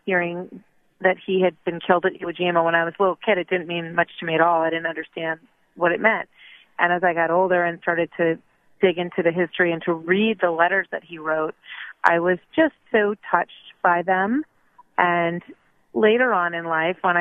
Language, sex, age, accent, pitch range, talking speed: English, female, 30-49, American, 170-190 Hz, 215 wpm